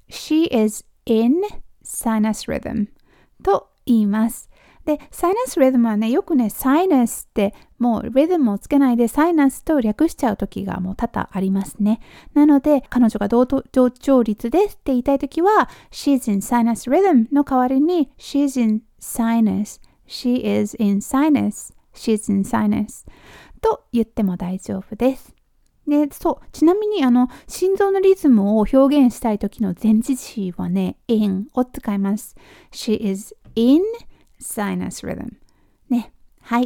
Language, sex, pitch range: Japanese, female, 215-285 Hz